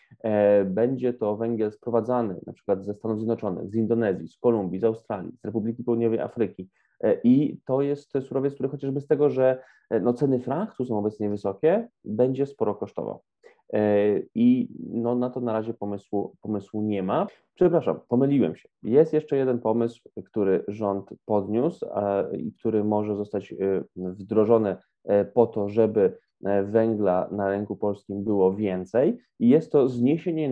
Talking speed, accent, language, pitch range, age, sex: 140 wpm, Polish, English, 105-125 Hz, 20-39, male